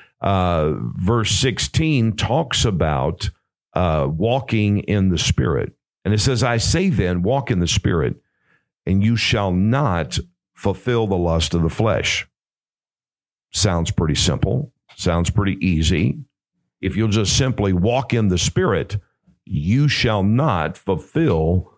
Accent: American